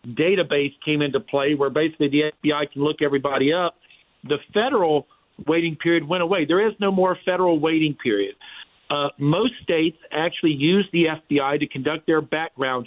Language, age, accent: English, 50-69, American